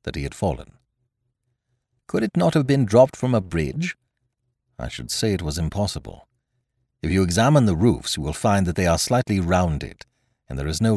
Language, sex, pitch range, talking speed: English, male, 90-125 Hz, 195 wpm